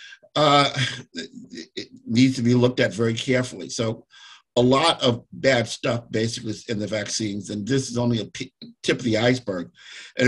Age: 50-69